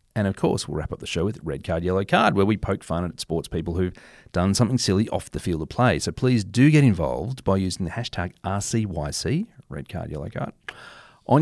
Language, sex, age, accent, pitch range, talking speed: English, male, 40-59, Australian, 85-115 Hz, 230 wpm